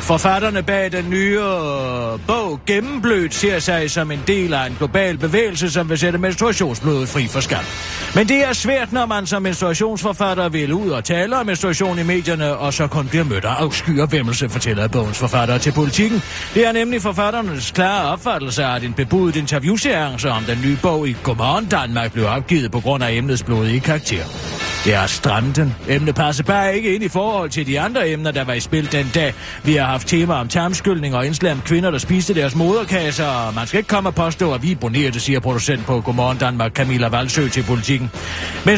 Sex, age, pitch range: male, 40-59, 125-180 Hz